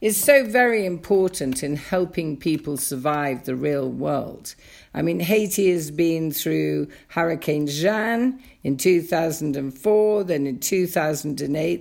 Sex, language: female, English